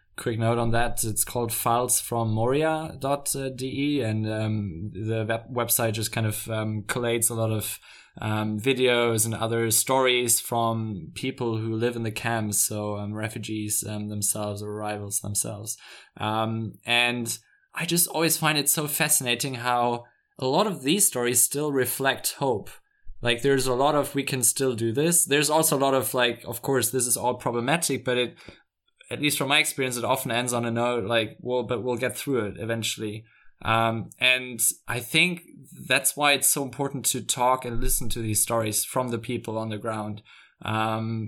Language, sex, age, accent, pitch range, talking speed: English, male, 20-39, German, 110-130 Hz, 180 wpm